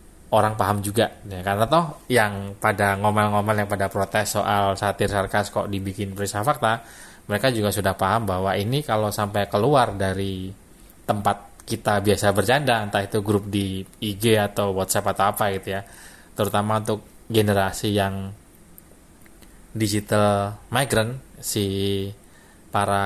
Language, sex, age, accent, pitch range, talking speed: Indonesian, male, 20-39, native, 95-110 Hz, 135 wpm